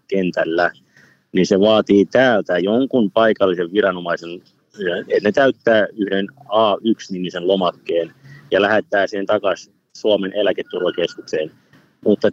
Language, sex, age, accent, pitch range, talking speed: Finnish, male, 30-49, native, 95-125 Hz, 100 wpm